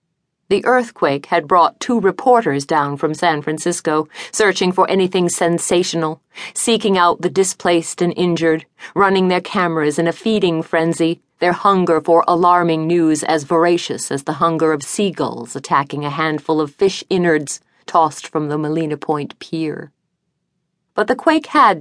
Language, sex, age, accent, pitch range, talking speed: English, female, 50-69, American, 155-185 Hz, 150 wpm